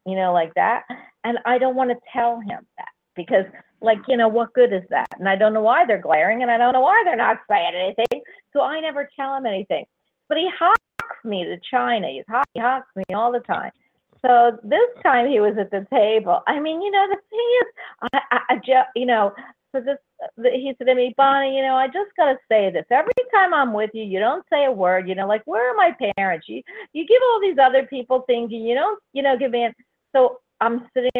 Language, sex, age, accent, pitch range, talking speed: English, female, 50-69, American, 220-315 Hz, 240 wpm